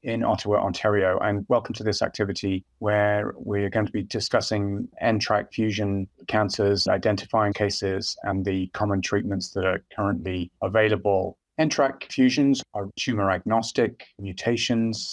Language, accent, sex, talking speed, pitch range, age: English, British, male, 130 wpm, 95-115 Hz, 30-49